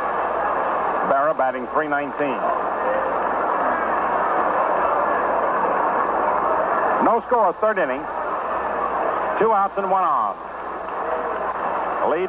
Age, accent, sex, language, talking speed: 60-79, American, male, English, 65 wpm